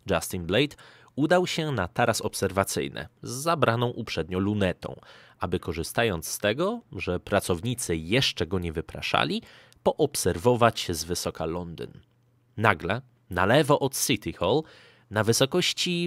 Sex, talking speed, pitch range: male, 125 wpm, 95-135 Hz